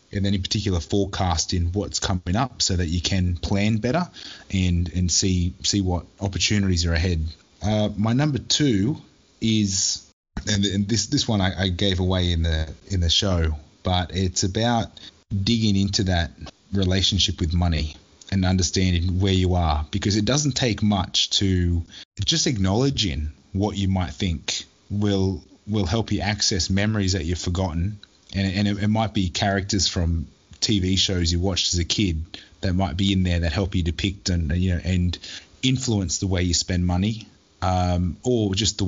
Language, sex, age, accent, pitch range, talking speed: English, male, 20-39, Australian, 90-105 Hz, 175 wpm